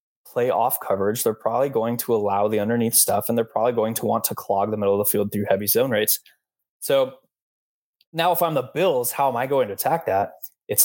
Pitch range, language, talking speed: 105-135 Hz, English, 225 wpm